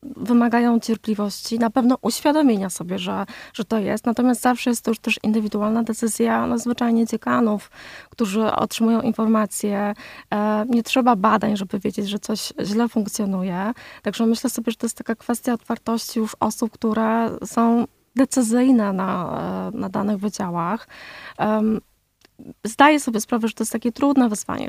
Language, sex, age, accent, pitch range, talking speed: Polish, female, 20-39, native, 215-245 Hz, 150 wpm